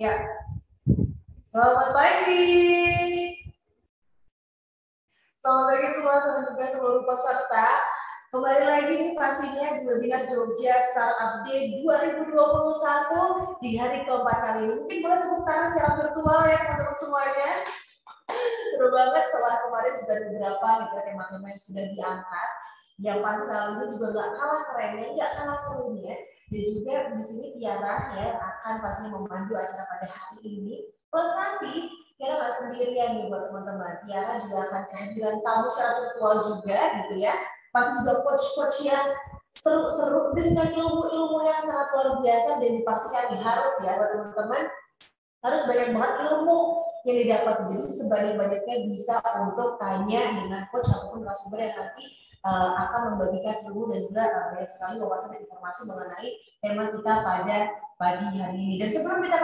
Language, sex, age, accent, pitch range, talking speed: Indonesian, female, 20-39, native, 215-295 Hz, 140 wpm